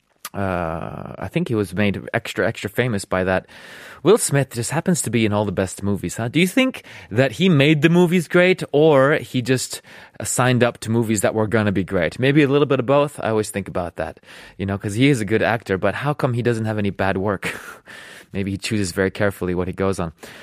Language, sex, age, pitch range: Korean, male, 20-39, 100-150 Hz